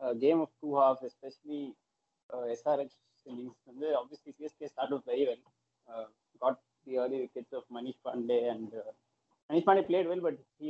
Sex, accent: male, Indian